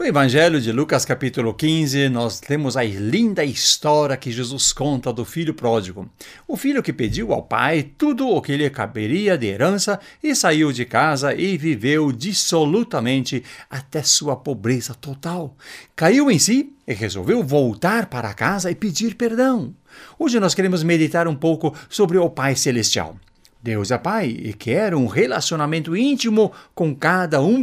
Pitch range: 120-170 Hz